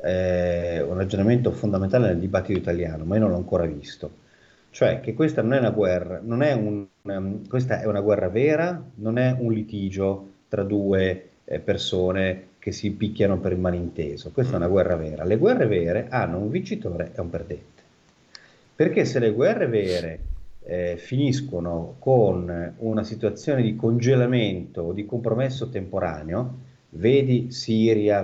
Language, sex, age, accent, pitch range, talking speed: Italian, male, 30-49, native, 90-115 Hz, 160 wpm